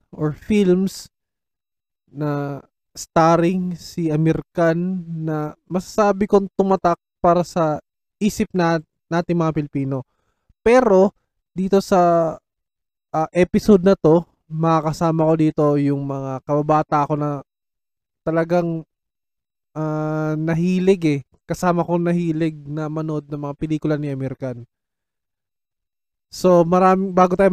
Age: 20-39